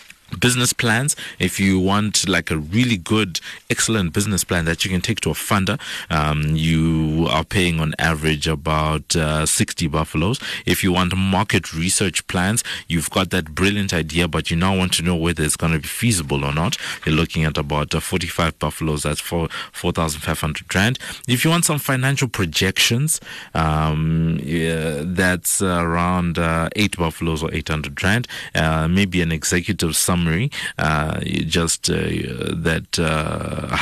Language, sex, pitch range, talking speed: English, male, 75-95 Hz, 160 wpm